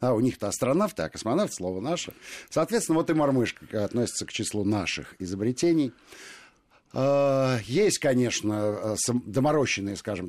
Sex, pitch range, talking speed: male, 95-130 Hz, 120 wpm